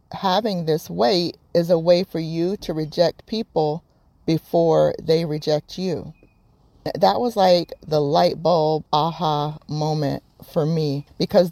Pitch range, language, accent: 155-185 Hz, English, American